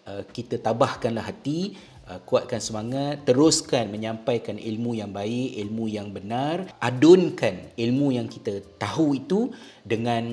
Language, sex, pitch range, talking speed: Malay, male, 105-125 Hz, 115 wpm